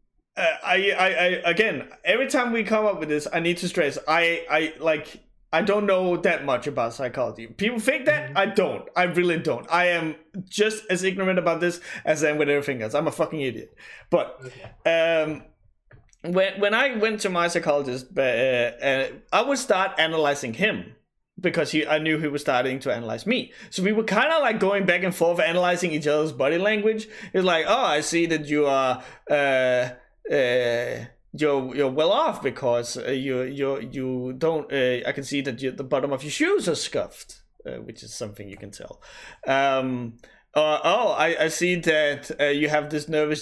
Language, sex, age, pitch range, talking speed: English, male, 20-39, 140-195 Hz, 200 wpm